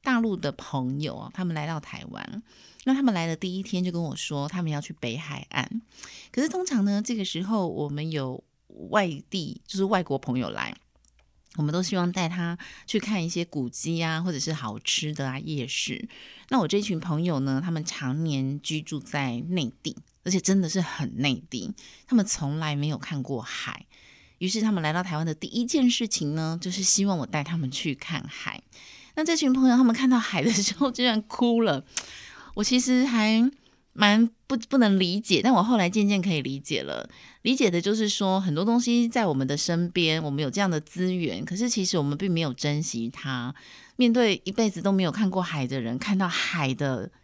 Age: 30-49